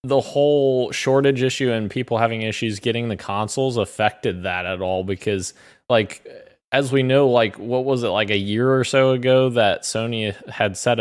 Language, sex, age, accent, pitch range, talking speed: English, male, 20-39, American, 100-115 Hz, 185 wpm